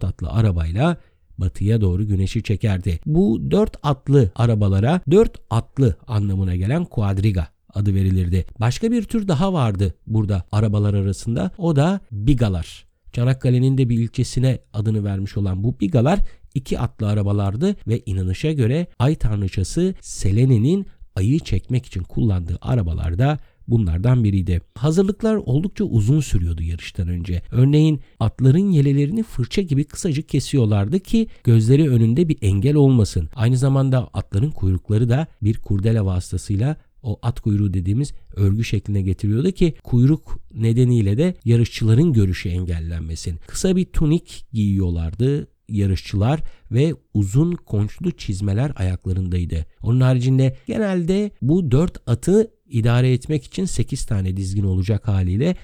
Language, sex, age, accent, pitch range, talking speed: Turkish, male, 50-69, native, 100-145 Hz, 125 wpm